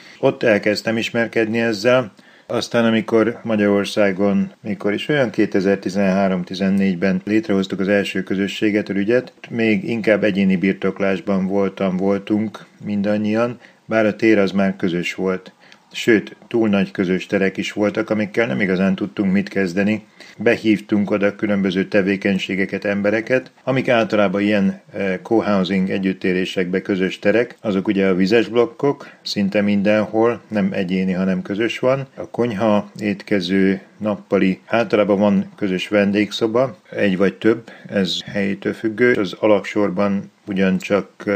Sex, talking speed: male, 120 wpm